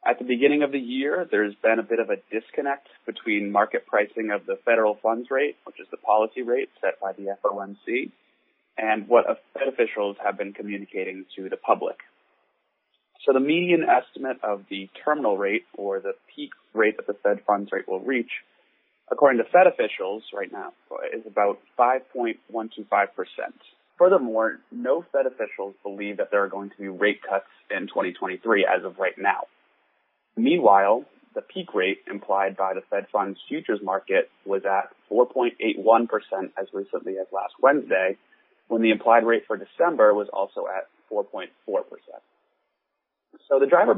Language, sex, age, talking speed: English, male, 30-49, 160 wpm